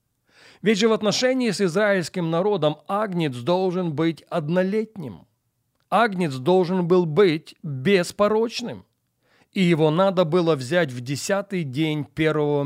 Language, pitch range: Russian, 145-185 Hz